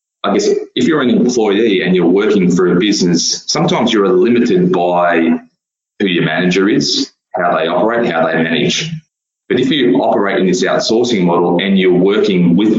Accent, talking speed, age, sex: Australian, 180 wpm, 20-39, male